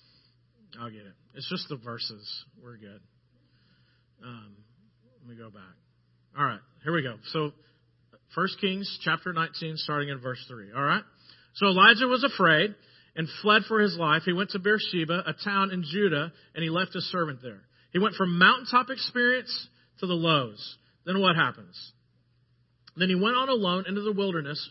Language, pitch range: English, 125-195 Hz